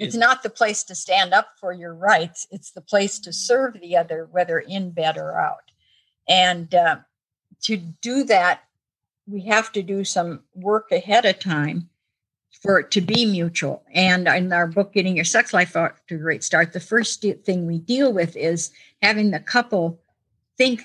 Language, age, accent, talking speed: English, 50-69, American, 185 wpm